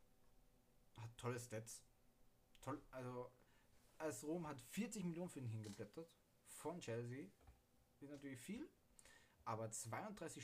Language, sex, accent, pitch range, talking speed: German, male, German, 125-165 Hz, 115 wpm